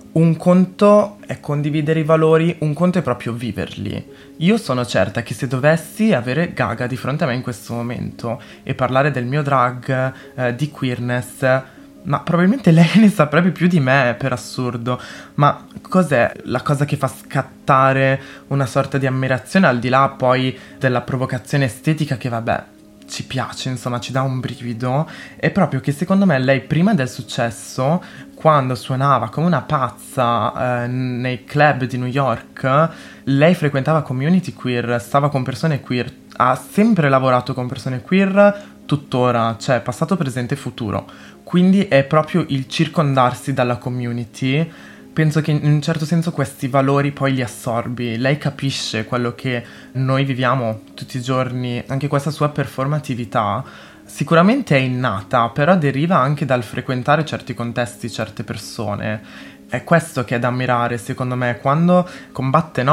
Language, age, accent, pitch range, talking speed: Italian, 20-39, native, 125-150 Hz, 155 wpm